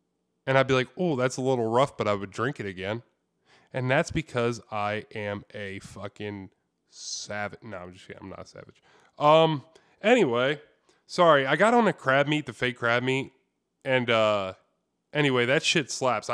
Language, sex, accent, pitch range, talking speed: English, male, American, 105-145 Hz, 185 wpm